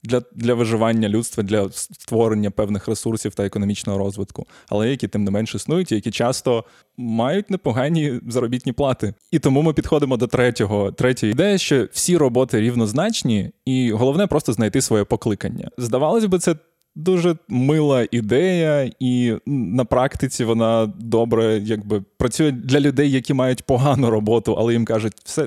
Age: 20-39